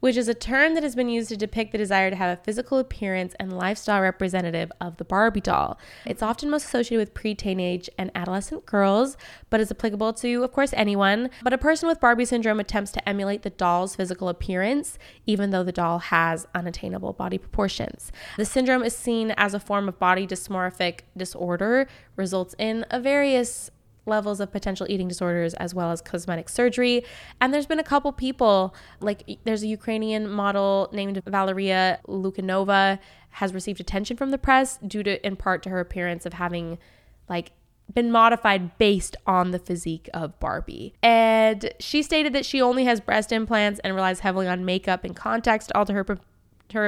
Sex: female